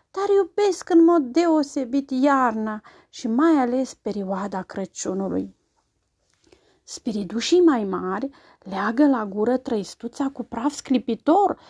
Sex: female